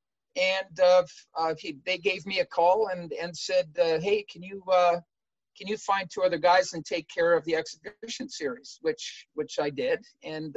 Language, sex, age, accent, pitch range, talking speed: English, male, 40-59, American, 170-210 Hz, 200 wpm